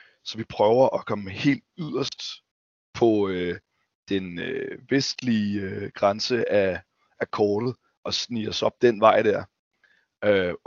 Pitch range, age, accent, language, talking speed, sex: 105-120 Hz, 30-49, native, Danish, 140 wpm, male